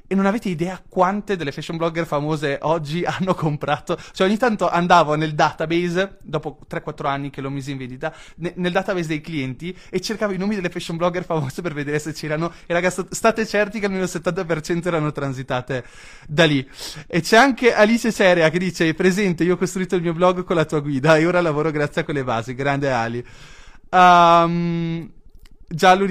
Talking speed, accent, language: 190 wpm, native, Italian